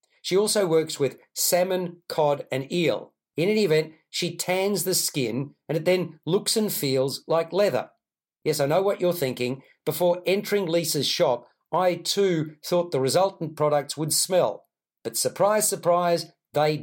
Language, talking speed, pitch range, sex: English, 160 wpm, 145-180 Hz, male